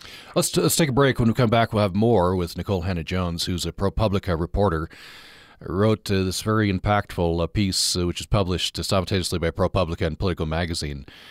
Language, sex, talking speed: English, male, 190 wpm